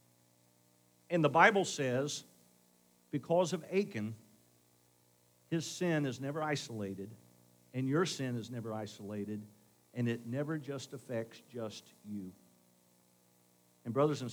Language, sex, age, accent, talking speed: English, male, 50-69, American, 115 wpm